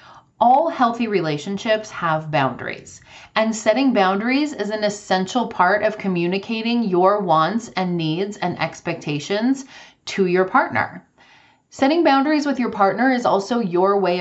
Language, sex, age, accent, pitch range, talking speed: English, female, 30-49, American, 170-220 Hz, 135 wpm